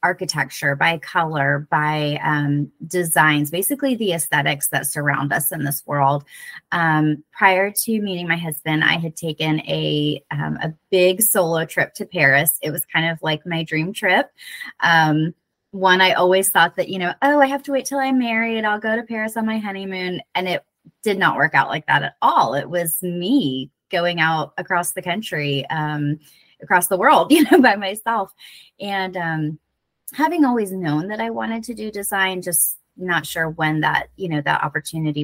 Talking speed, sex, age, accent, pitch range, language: 185 wpm, female, 20-39, American, 155-195 Hz, English